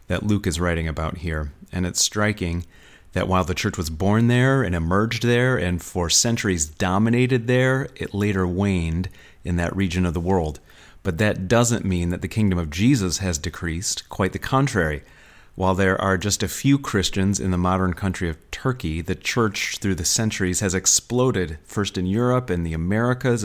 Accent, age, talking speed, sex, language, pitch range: American, 30-49, 185 wpm, male, English, 90-105 Hz